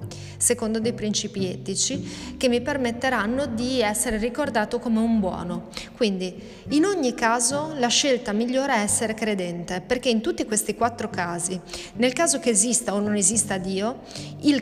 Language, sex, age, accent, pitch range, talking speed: Italian, female, 30-49, native, 195-245 Hz, 155 wpm